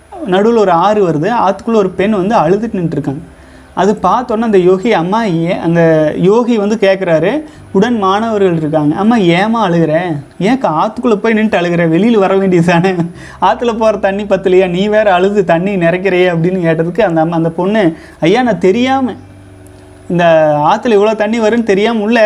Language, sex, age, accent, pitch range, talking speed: Tamil, male, 30-49, native, 175-220 Hz, 165 wpm